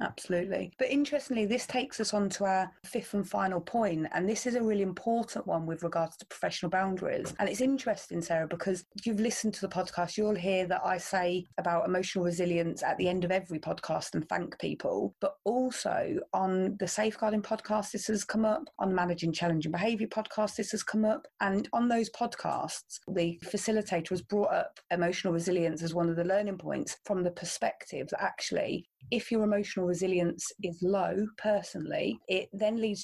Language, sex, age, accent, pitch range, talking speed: English, female, 30-49, British, 180-215 Hz, 190 wpm